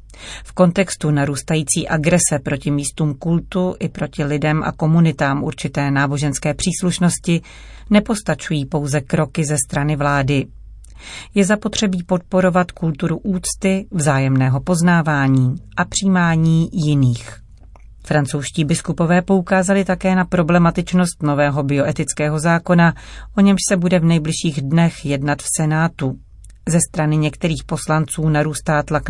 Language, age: Czech, 40-59